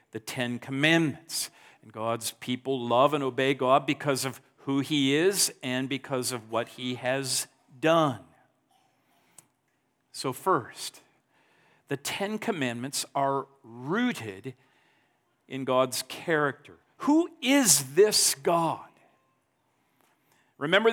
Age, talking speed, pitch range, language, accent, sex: 50-69, 105 wpm, 135-185 Hz, English, American, male